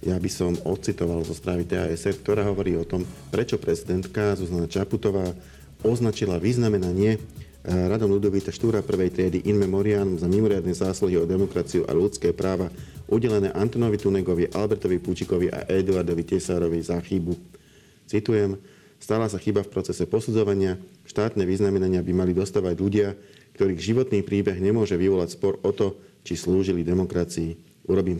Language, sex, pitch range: Slovak, male, 85-100 Hz